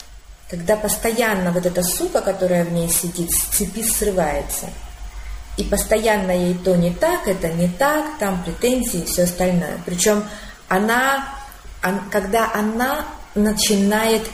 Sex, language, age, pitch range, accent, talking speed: female, Russian, 30-49, 175-210 Hz, native, 130 wpm